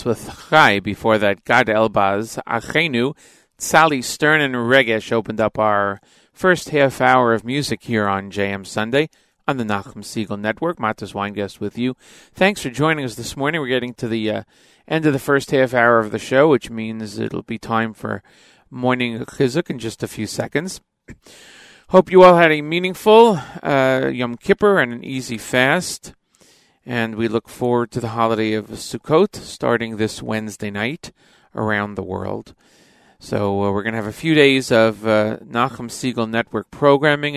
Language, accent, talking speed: English, American, 175 wpm